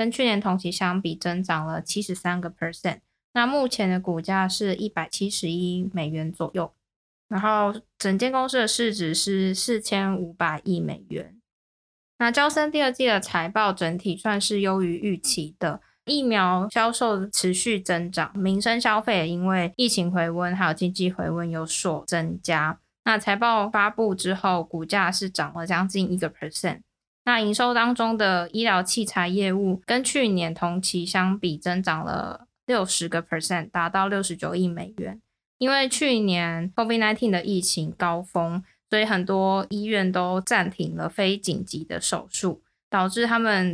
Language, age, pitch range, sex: Chinese, 20-39, 175-215 Hz, female